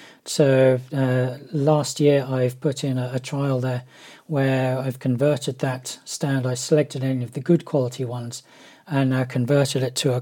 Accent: British